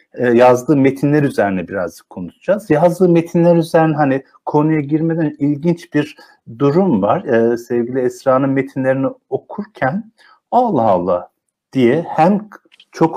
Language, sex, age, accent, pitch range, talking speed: Turkish, male, 50-69, native, 130-180 Hz, 115 wpm